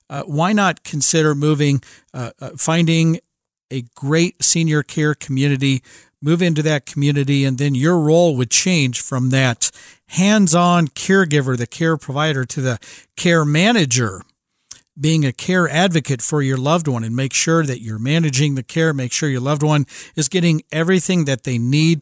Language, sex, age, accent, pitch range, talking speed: English, male, 50-69, American, 140-180 Hz, 170 wpm